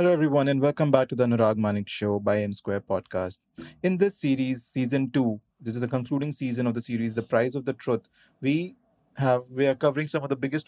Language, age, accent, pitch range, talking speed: English, 30-49, Indian, 130-155 Hz, 225 wpm